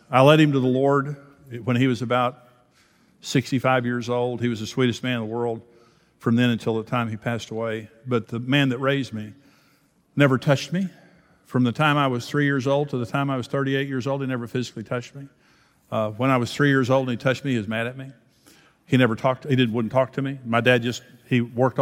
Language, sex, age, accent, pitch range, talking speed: English, male, 50-69, American, 120-140 Hz, 245 wpm